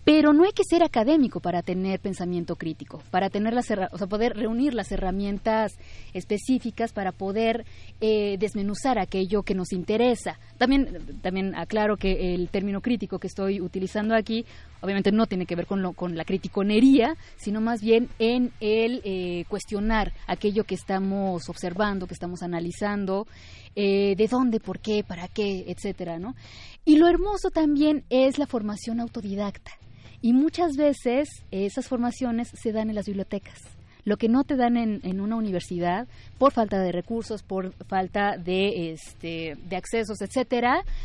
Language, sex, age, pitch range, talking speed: Spanish, female, 20-39, 185-225 Hz, 160 wpm